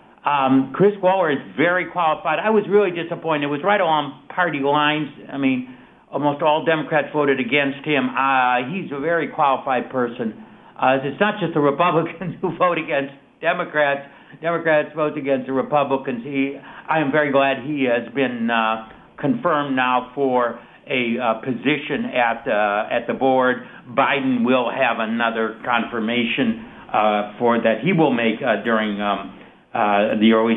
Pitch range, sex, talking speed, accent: 135-175 Hz, male, 160 wpm, American